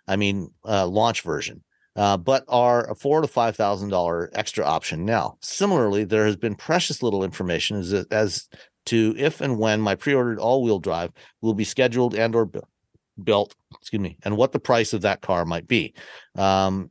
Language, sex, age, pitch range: English, male, 40-59, 95-120 Hz